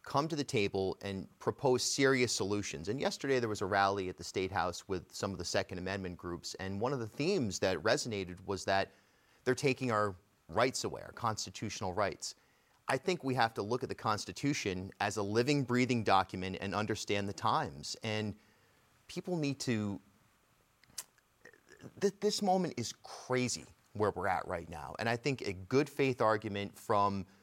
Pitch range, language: 100-125 Hz, English